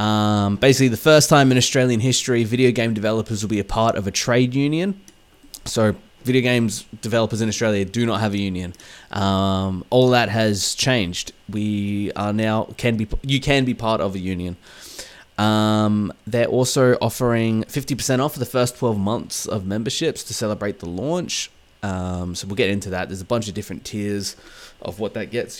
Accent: Australian